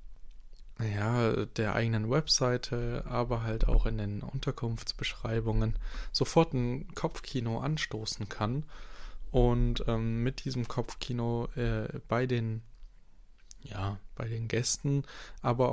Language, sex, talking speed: German, male, 95 wpm